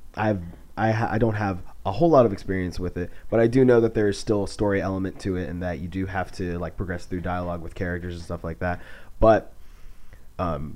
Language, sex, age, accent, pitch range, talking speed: English, male, 30-49, American, 90-110 Hz, 245 wpm